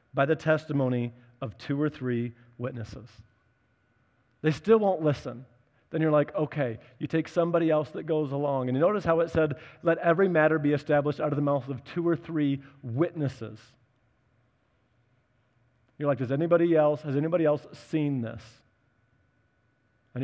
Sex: male